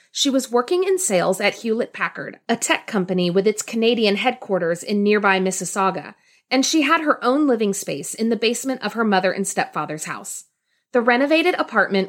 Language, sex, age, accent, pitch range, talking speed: English, female, 30-49, American, 190-255 Hz, 180 wpm